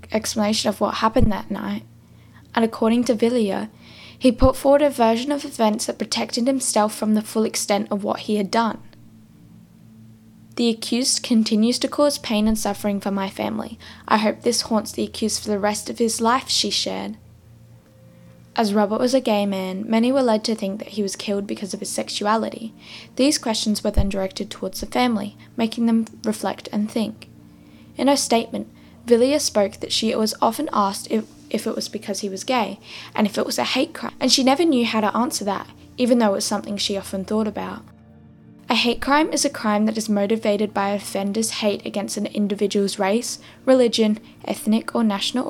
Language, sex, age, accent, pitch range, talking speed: English, female, 10-29, Australian, 200-235 Hz, 195 wpm